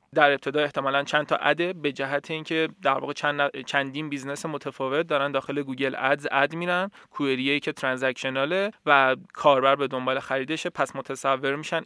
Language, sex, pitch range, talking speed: Persian, male, 140-175 Hz, 165 wpm